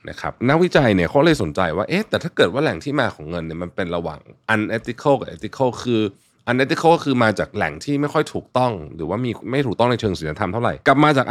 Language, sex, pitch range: Thai, male, 95-135 Hz